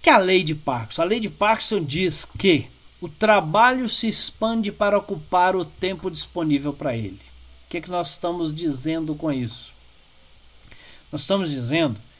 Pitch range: 130-190 Hz